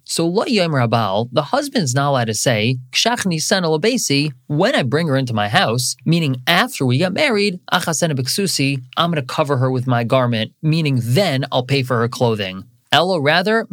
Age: 30-49